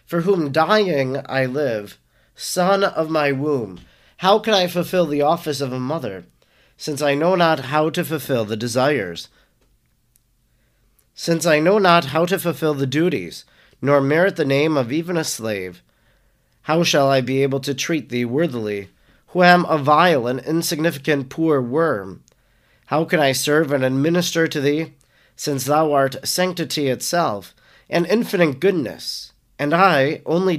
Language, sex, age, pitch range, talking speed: English, male, 40-59, 135-170 Hz, 155 wpm